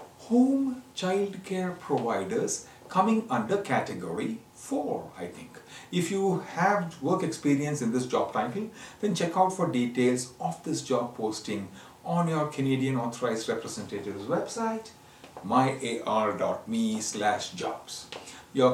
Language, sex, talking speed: English, male, 120 wpm